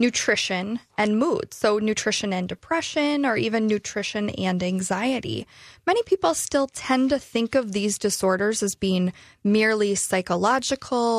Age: 20-39